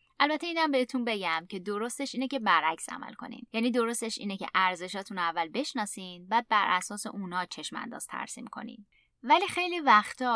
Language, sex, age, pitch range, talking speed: Persian, female, 20-39, 180-240 Hz, 170 wpm